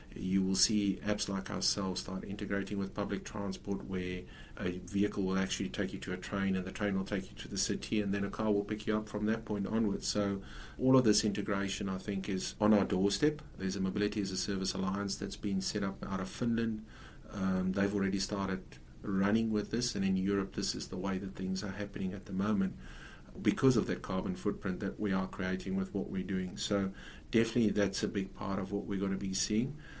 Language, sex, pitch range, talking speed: English, male, 95-105 Hz, 230 wpm